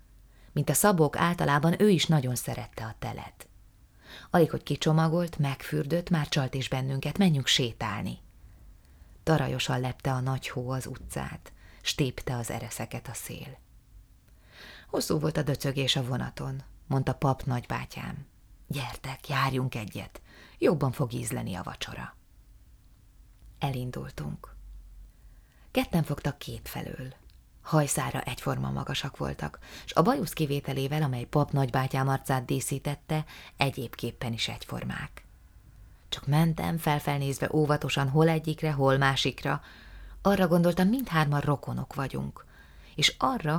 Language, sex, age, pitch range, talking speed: Hungarian, female, 30-49, 125-150 Hz, 115 wpm